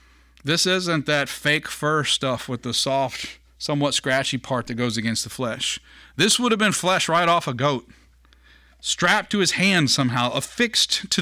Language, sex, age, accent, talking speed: English, male, 40-59, American, 175 wpm